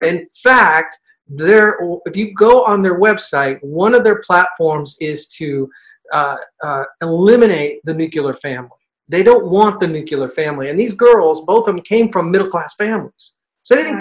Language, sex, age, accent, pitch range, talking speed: English, male, 40-59, American, 155-215 Hz, 165 wpm